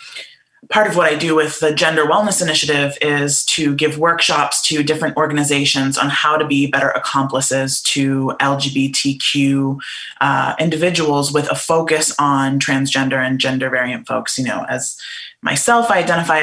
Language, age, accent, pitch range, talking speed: English, 20-39, American, 140-165 Hz, 155 wpm